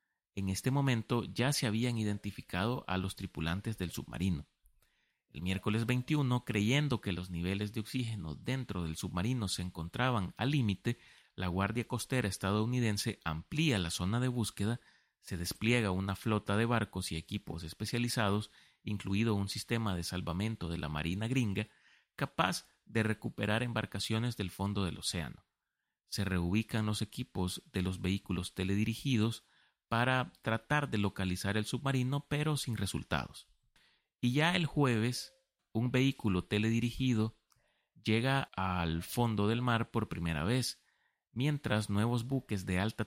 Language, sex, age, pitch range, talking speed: Spanish, male, 30-49, 95-120 Hz, 140 wpm